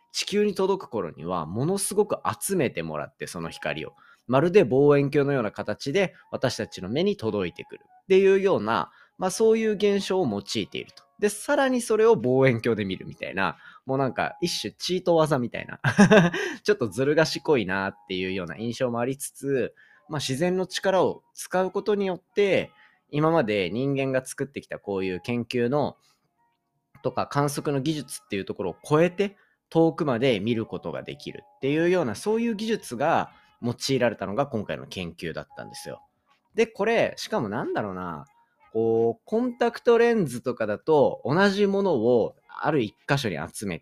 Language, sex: Japanese, male